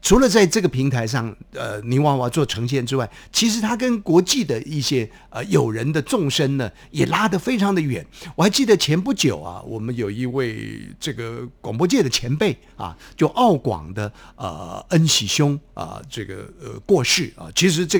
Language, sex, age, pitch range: Chinese, male, 50-69, 120-180 Hz